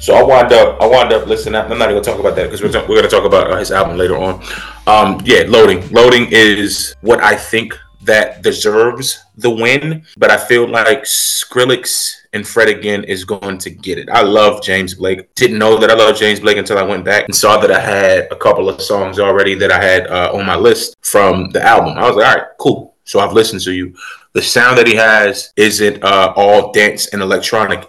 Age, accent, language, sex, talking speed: 30-49, American, English, male, 240 wpm